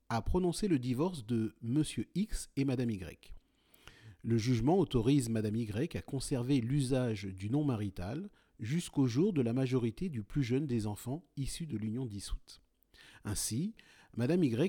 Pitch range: 115-150 Hz